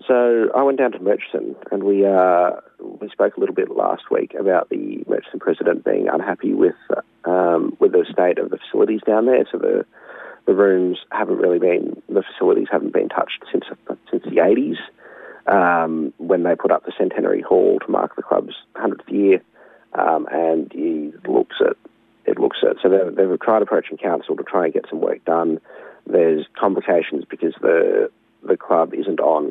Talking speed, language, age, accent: 185 wpm, English, 30-49, Australian